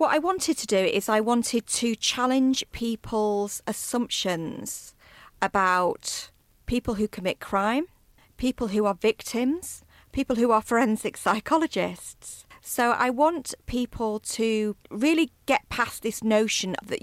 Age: 40-59